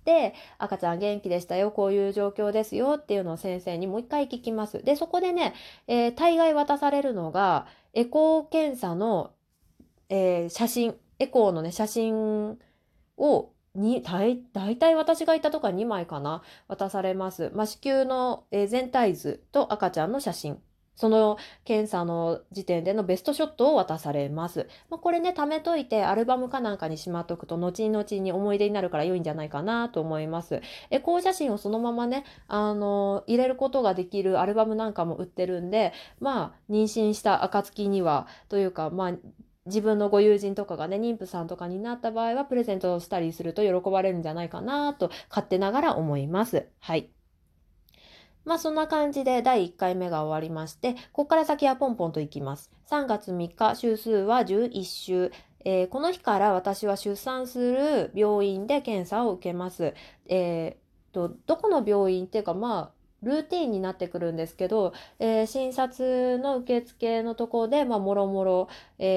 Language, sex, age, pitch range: Japanese, female, 20-39, 180-250 Hz